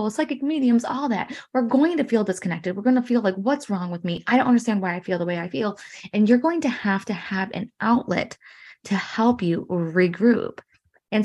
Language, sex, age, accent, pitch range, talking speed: English, female, 20-39, American, 175-225 Hz, 225 wpm